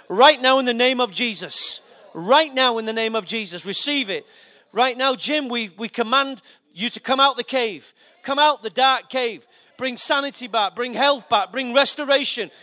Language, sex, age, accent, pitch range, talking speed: English, male, 40-59, British, 185-260 Hz, 195 wpm